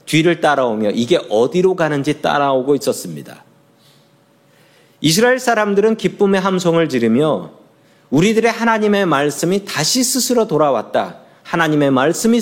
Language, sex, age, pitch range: Korean, male, 40-59, 130-185 Hz